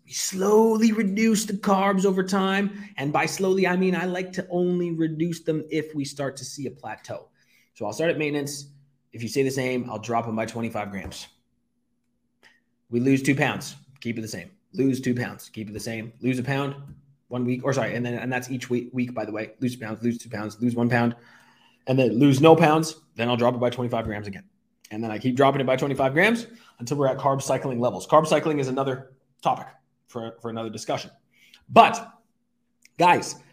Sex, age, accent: male, 20-39, American